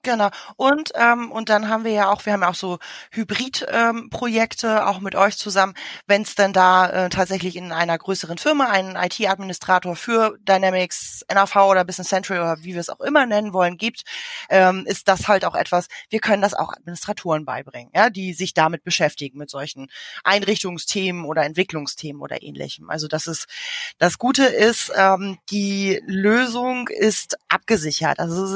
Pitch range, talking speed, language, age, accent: 180-220 Hz, 175 wpm, German, 20-39, German